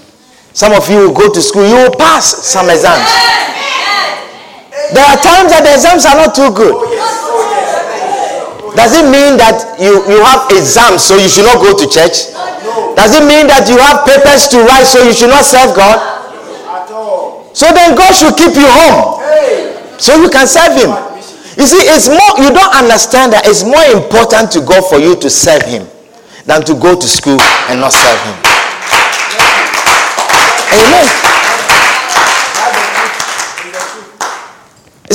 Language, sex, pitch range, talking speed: English, male, 200-305 Hz, 155 wpm